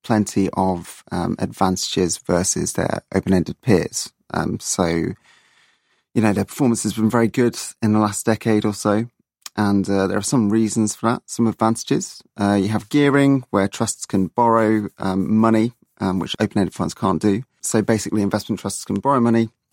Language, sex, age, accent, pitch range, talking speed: English, male, 30-49, British, 95-115 Hz, 175 wpm